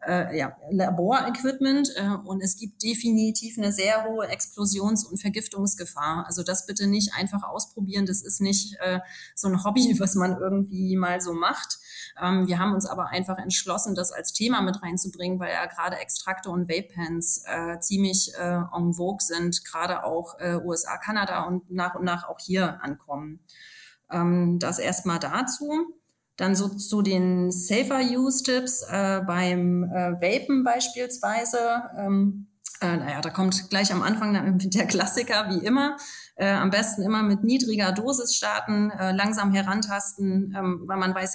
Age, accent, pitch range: 30-49, German, 180-215 Hz